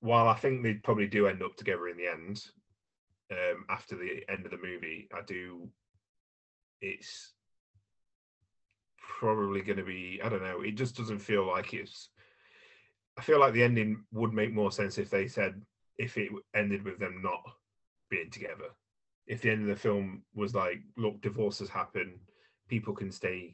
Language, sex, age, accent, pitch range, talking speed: English, male, 30-49, British, 95-115 Hz, 180 wpm